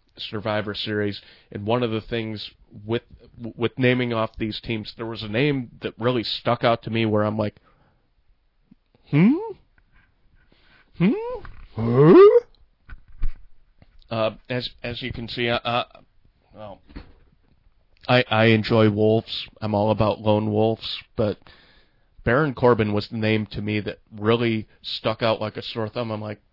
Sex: male